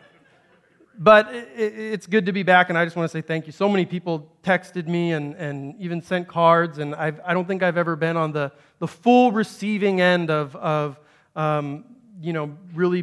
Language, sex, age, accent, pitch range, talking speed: English, male, 30-49, American, 155-210 Hz, 205 wpm